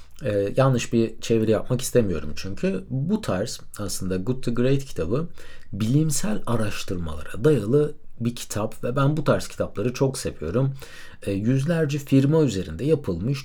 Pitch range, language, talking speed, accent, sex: 100-145 Hz, Turkish, 140 wpm, native, male